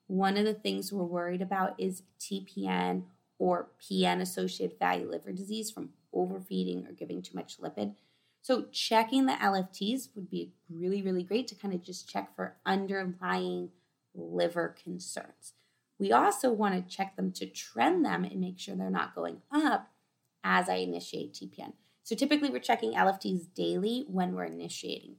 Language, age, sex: English, 20-39, female